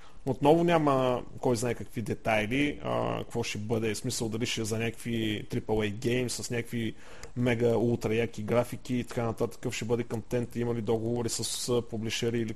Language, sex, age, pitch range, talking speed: Bulgarian, male, 30-49, 110-150 Hz, 180 wpm